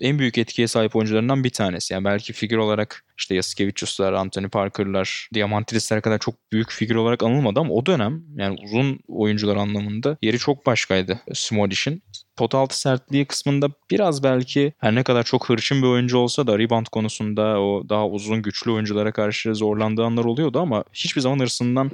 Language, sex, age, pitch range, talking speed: Turkish, male, 20-39, 100-120 Hz, 170 wpm